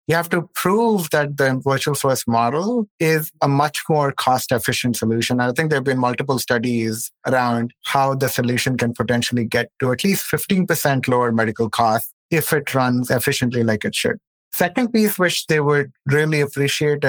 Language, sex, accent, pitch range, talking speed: English, male, Indian, 125-155 Hz, 175 wpm